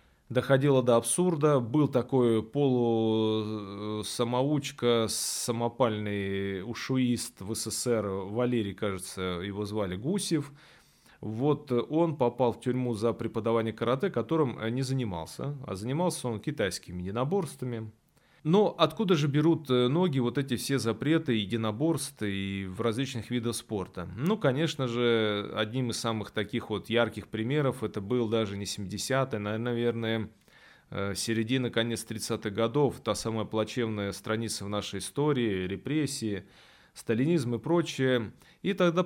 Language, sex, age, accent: Russian, male, 20-39, native